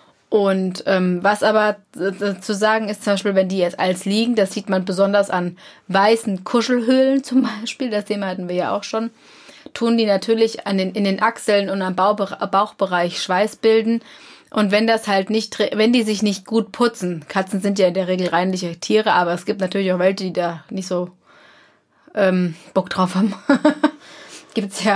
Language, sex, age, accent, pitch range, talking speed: German, female, 20-39, German, 190-220 Hz, 190 wpm